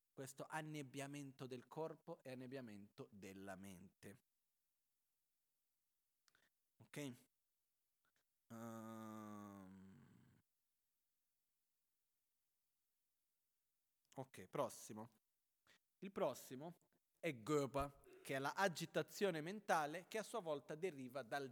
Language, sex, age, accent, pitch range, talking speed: Italian, male, 40-59, native, 125-160 Hz, 75 wpm